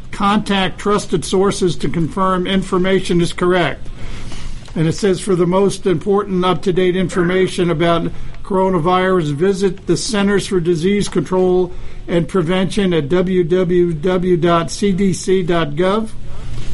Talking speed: 105 wpm